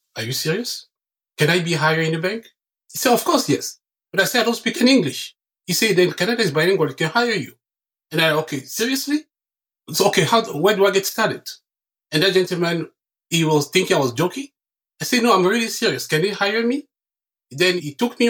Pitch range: 135-185 Hz